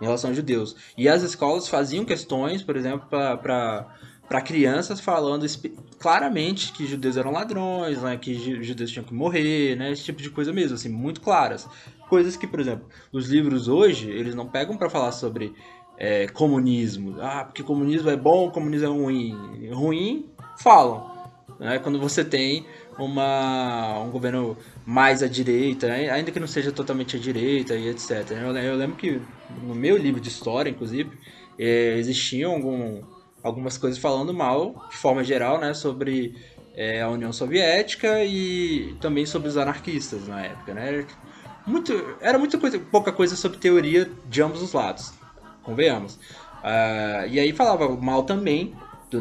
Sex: male